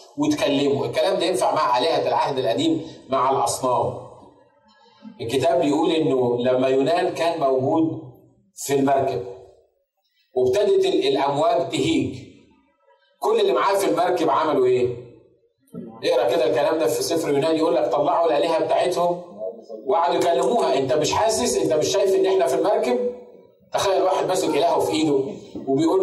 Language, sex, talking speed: Arabic, male, 140 wpm